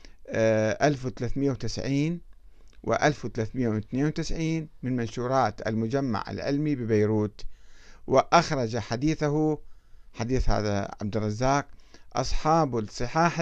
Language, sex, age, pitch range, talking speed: Arabic, male, 50-69, 110-150 Hz, 70 wpm